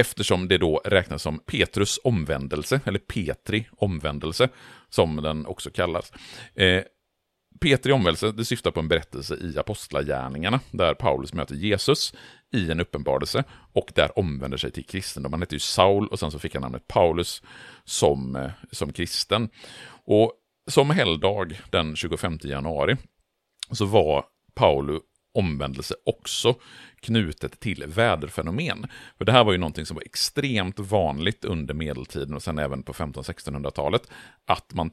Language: Swedish